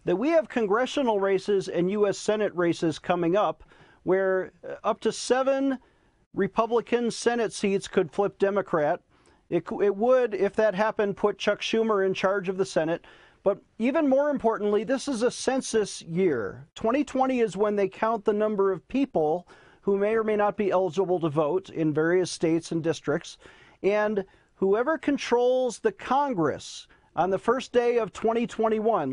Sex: male